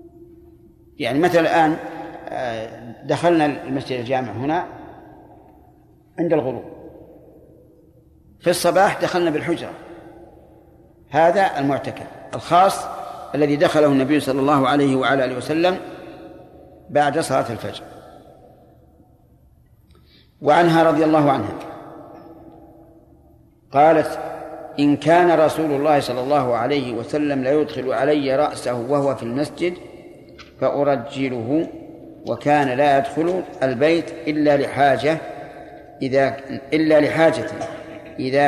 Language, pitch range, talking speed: Arabic, 135-160 Hz, 90 wpm